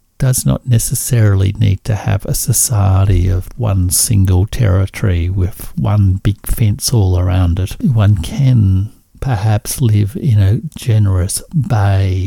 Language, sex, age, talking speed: English, male, 60-79, 130 wpm